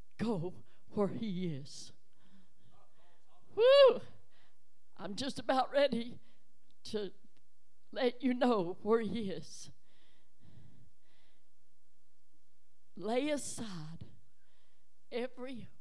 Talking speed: 70 wpm